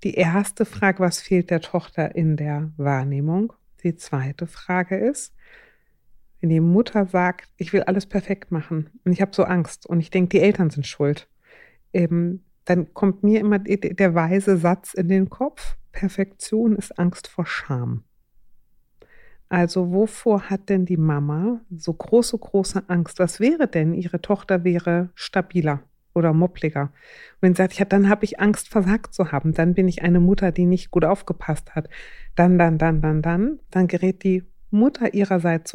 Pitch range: 170-195 Hz